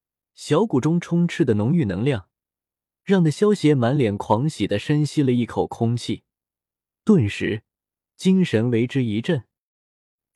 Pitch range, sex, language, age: 110-165 Hz, male, Chinese, 20-39